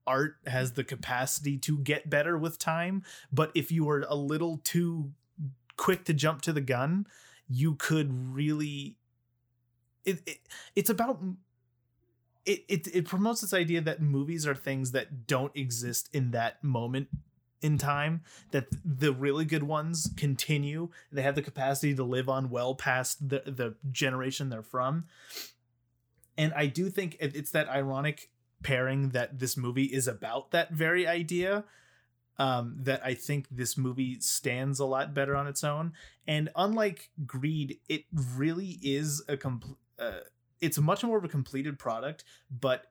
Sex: male